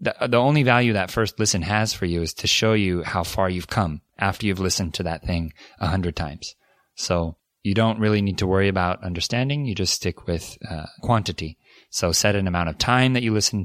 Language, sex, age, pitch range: Korean, male, 20-39, 90-110 Hz